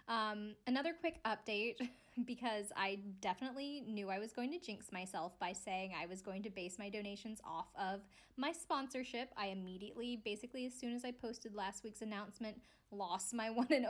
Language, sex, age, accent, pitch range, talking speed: English, female, 20-39, American, 200-245 Hz, 180 wpm